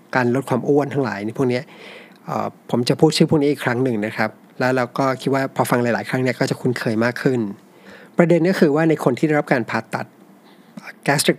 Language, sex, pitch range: Thai, male, 120-150 Hz